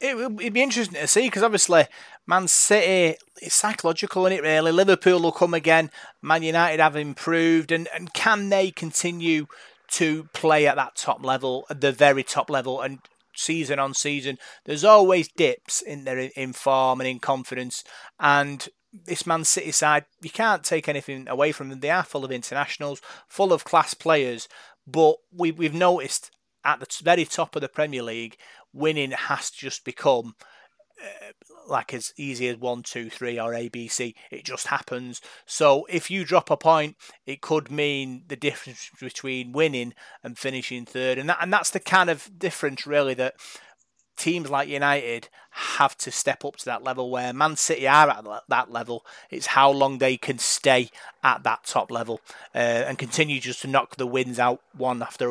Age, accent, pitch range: 30-49, British, 130-165 Hz